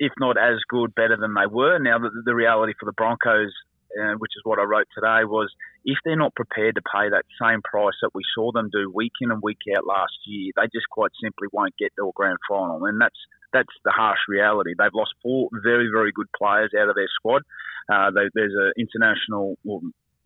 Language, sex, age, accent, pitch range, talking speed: English, male, 30-49, Australian, 105-145 Hz, 230 wpm